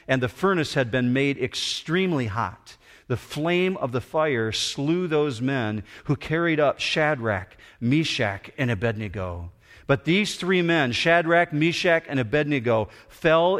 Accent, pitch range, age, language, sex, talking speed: American, 115-165 Hz, 50-69, English, male, 140 wpm